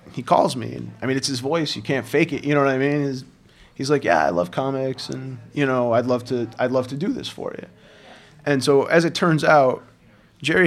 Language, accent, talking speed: English, American, 255 wpm